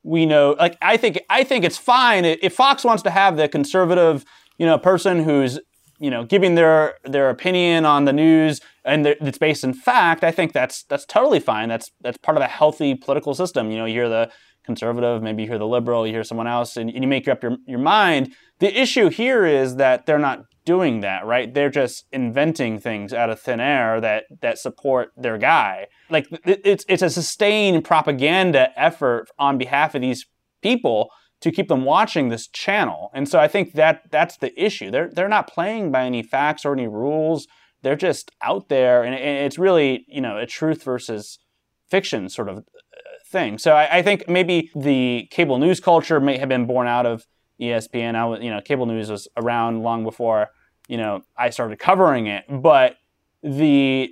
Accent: American